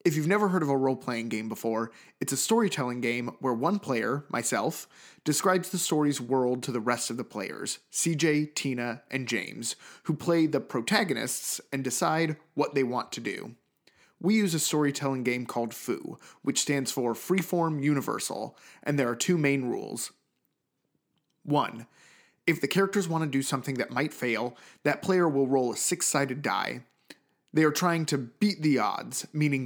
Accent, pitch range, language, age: American, 125-165 Hz, English, 30-49